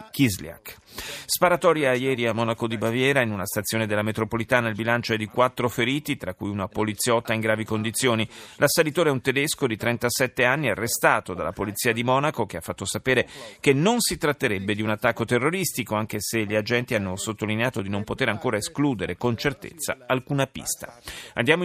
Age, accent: 30-49, native